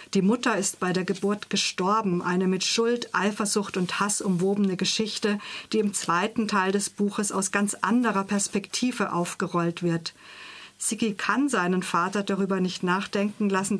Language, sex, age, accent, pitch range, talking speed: German, female, 50-69, German, 180-215 Hz, 150 wpm